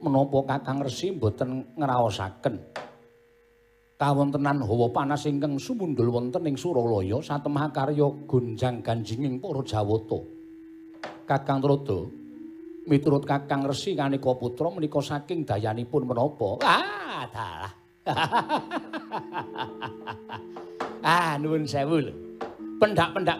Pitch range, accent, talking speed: 125-165 Hz, native, 95 wpm